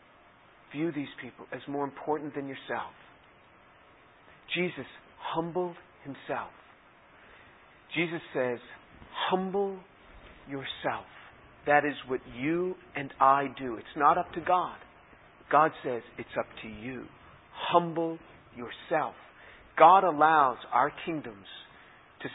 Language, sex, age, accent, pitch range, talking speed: English, male, 50-69, American, 120-145 Hz, 105 wpm